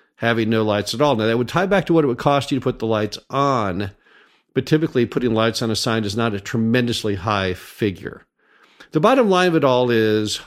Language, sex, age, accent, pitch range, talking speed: English, male, 50-69, American, 110-140 Hz, 235 wpm